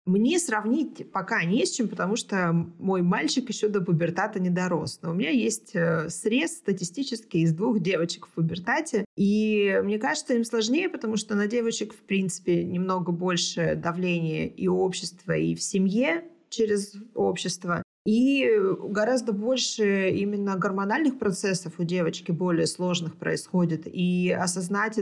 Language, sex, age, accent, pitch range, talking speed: Russian, female, 20-39, native, 170-205 Hz, 145 wpm